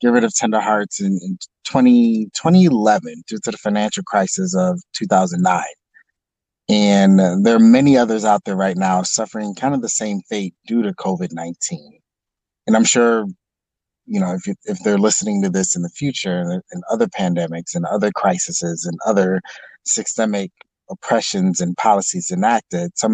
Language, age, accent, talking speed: English, 30-49, American, 160 wpm